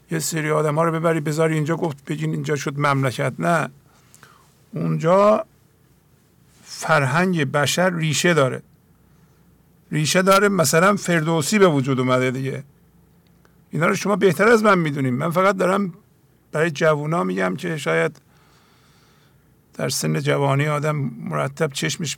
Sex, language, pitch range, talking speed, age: male, English, 140-165 Hz, 130 wpm, 50-69